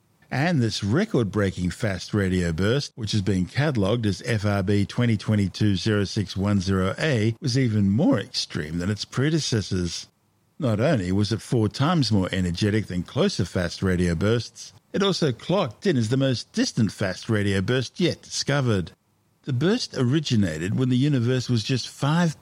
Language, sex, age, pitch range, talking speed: English, male, 50-69, 100-135 Hz, 155 wpm